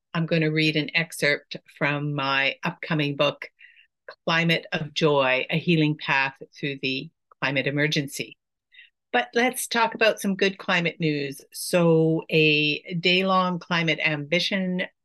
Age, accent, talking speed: 50-69, American, 130 wpm